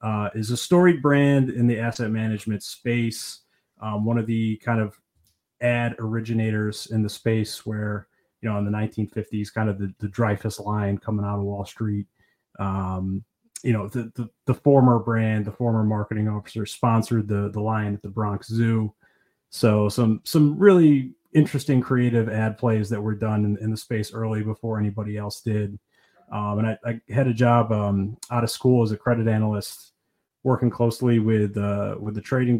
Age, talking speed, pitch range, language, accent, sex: 30-49, 180 wpm, 105-120 Hz, English, American, male